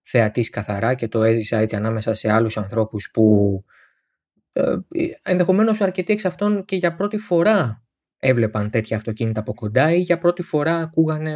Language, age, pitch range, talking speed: Greek, 20-39, 115-170 Hz, 155 wpm